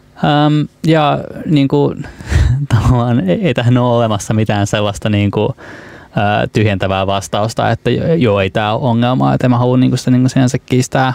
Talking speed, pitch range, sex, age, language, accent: 155 wpm, 115-130 Hz, male, 20-39, Finnish, native